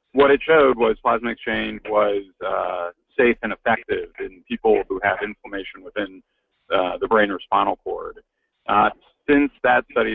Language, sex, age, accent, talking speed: English, male, 40-59, American, 160 wpm